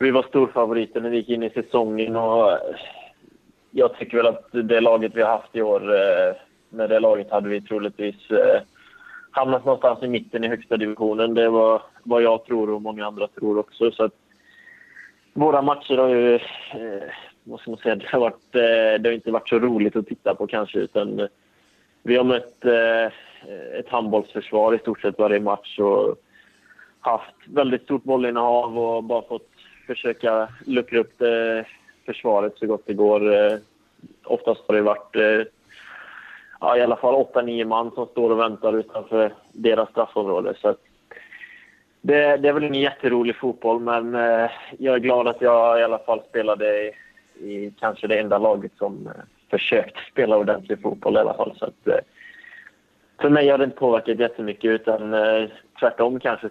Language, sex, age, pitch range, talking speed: Swedish, male, 20-39, 110-130 Hz, 165 wpm